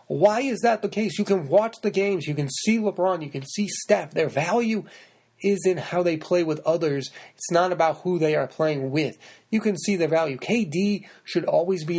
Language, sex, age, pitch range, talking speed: English, male, 30-49, 145-195 Hz, 220 wpm